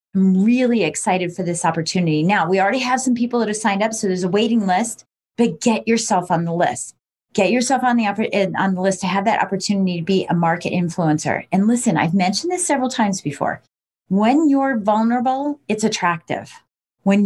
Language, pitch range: English, 180-235 Hz